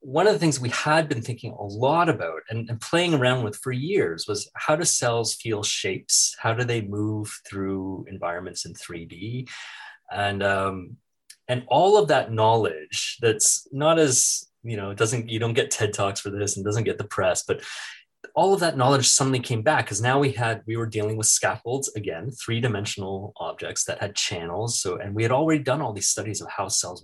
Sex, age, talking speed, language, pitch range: male, 30-49, 205 wpm, English, 100-130 Hz